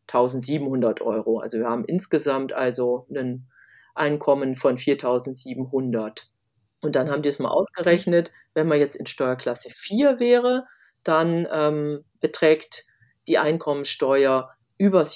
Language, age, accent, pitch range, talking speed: German, 40-59, German, 130-170 Hz, 125 wpm